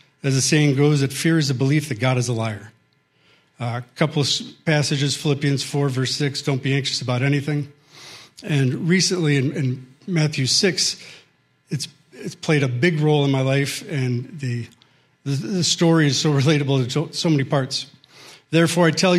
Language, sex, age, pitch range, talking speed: English, male, 40-59, 135-165 Hz, 180 wpm